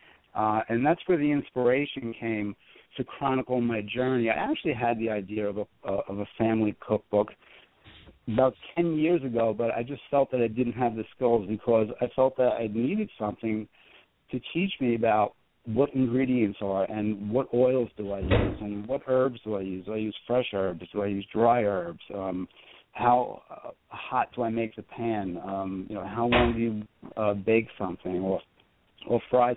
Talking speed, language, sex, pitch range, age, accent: 195 wpm, English, male, 105-130 Hz, 60-79, American